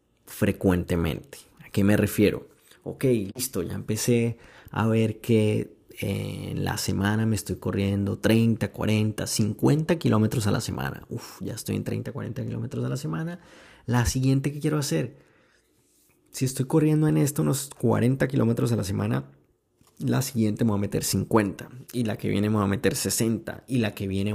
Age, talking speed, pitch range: 30-49, 175 wpm, 105-125 Hz